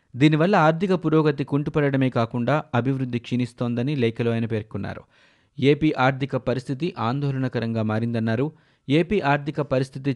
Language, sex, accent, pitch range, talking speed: Telugu, male, native, 115-145 Hz, 105 wpm